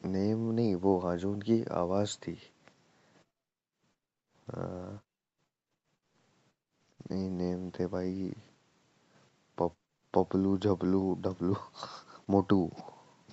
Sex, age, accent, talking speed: male, 30-49, native, 65 wpm